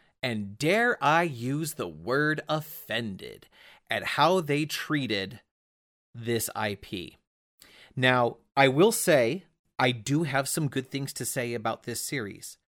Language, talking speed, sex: English, 130 wpm, male